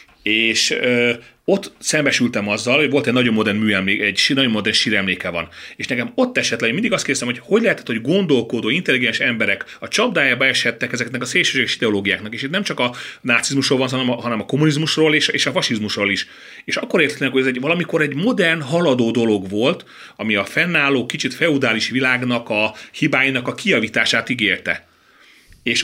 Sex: male